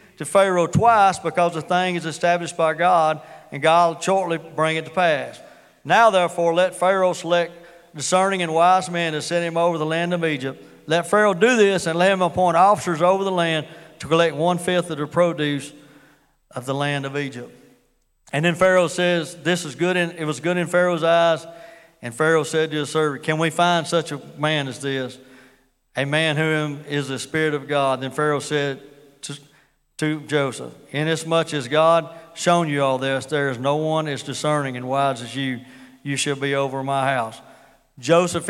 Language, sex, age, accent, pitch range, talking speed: English, male, 40-59, American, 145-175 Hz, 190 wpm